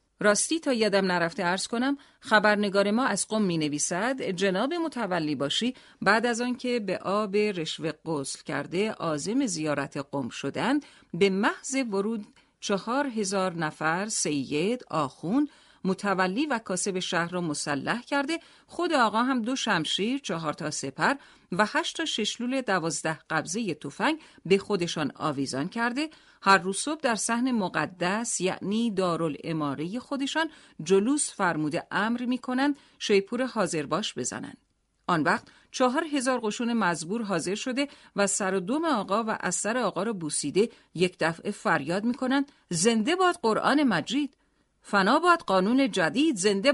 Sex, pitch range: female, 175-260 Hz